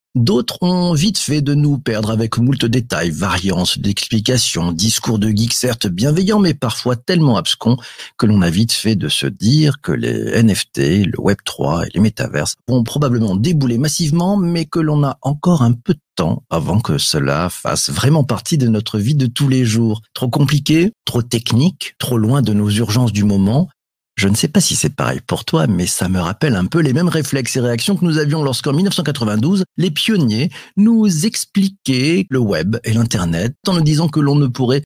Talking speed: 195 wpm